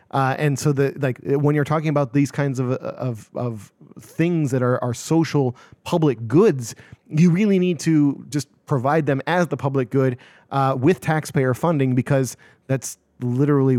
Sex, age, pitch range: male, 30-49, 125-140 Hz